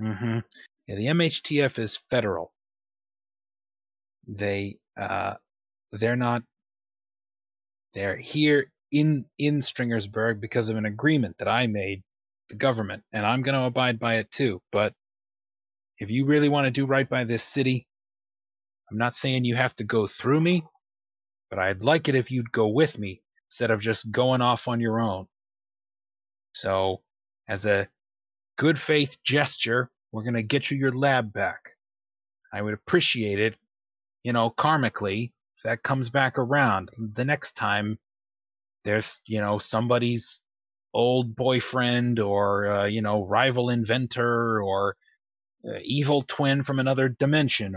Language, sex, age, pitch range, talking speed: English, male, 30-49, 110-140 Hz, 145 wpm